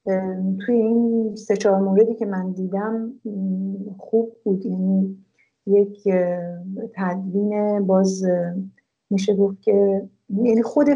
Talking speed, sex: 100 wpm, female